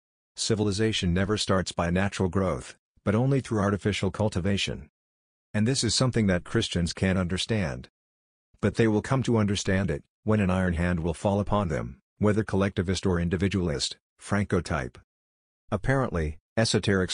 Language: English